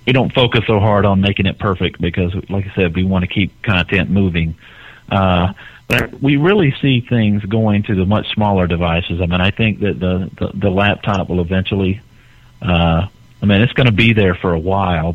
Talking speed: 210 wpm